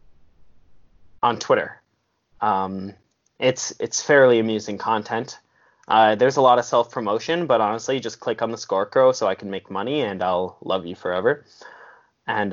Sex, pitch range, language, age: male, 100-125 Hz, English, 10-29